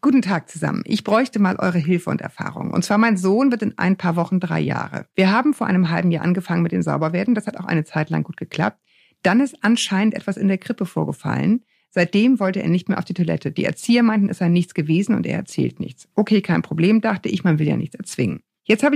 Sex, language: female, German